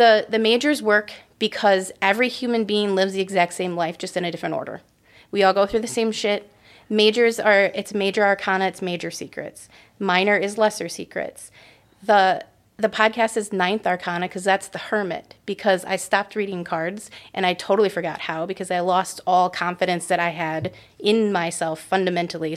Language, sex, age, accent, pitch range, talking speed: English, female, 30-49, American, 180-215 Hz, 180 wpm